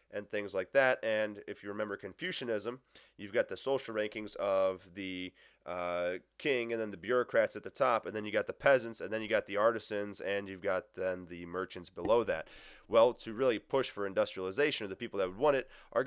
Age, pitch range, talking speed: 20-39, 95-120 Hz, 215 wpm